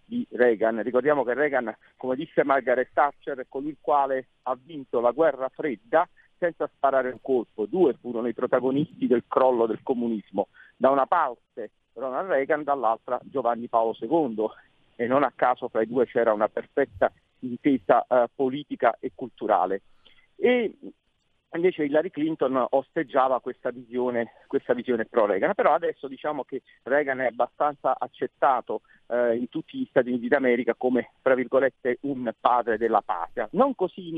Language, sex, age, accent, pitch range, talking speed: Italian, male, 50-69, native, 125-160 Hz, 155 wpm